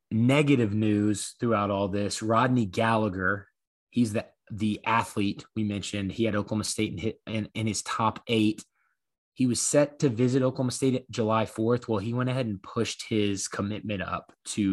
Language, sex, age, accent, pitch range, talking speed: English, male, 20-39, American, 105-120 Hz, 165 wpm